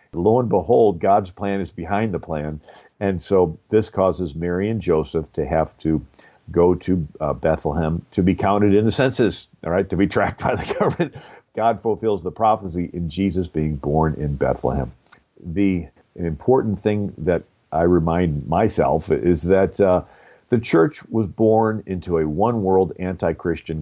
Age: 50-69